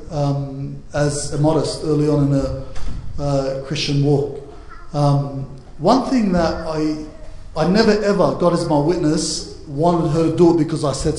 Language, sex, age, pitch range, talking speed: English, male, 30-49, 150-175 Hz, 165 wpm